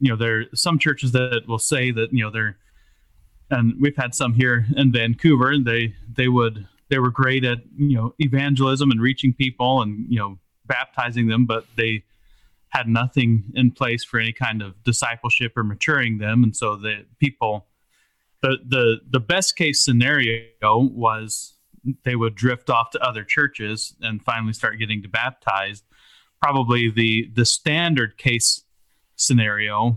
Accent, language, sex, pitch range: American, English, male, 110-130 Hz